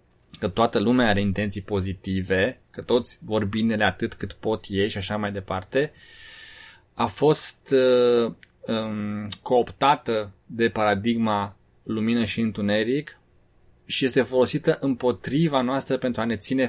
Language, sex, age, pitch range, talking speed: Romanian, male, 20-39, 100-125 Hz, 125 wpm